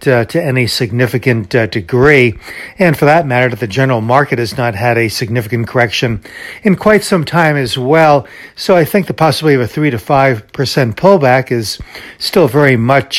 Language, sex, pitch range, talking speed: English, male, 120-145 Hz, 190 wpm